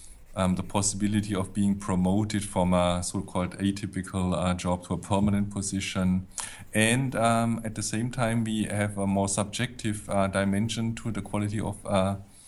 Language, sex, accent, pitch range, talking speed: English, male, German, 95-110 Hz, 165 wpm